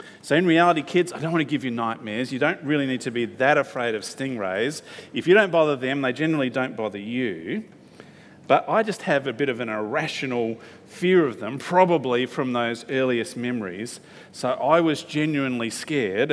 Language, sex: English, male